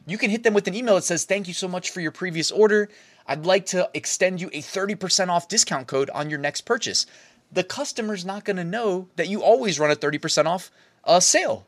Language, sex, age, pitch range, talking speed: English, male, 20-39, 140-195 Hz, 230 wpm